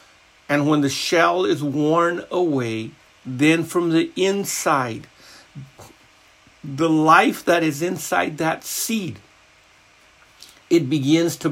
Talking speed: 110 wpm